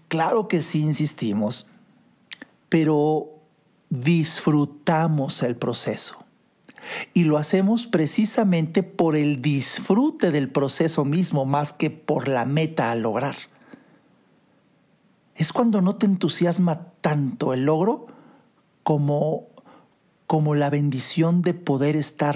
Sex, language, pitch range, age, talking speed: male, Spanish, 150-195 Hz, 50-69, 105 wpm